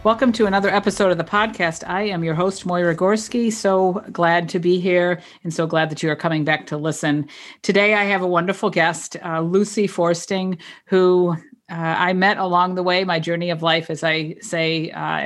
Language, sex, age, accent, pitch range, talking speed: English, female, 50-69, American, 160-185 Hz, 205 wpm